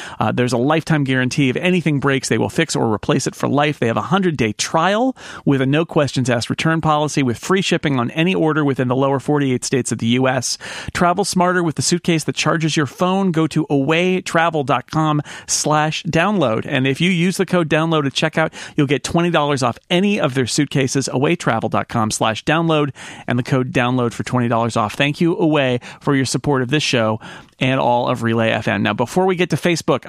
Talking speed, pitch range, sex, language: 215 wpm, 130-165 Hz, male, English